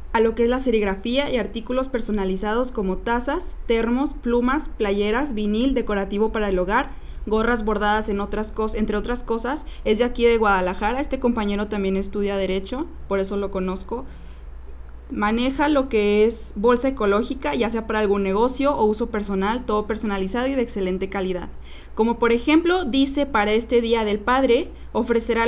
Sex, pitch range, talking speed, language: female, 200-240 Hz, 165 wpm, Spanish